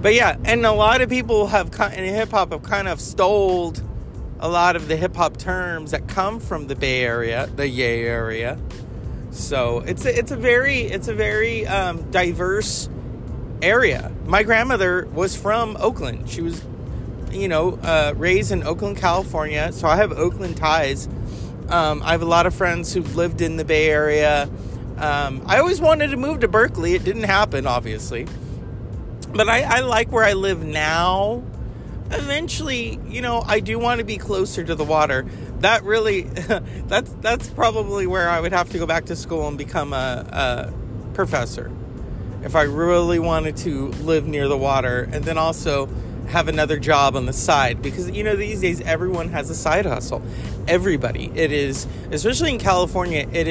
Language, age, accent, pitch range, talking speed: English, 30-49, American, 135-190 Hz, 180 wpm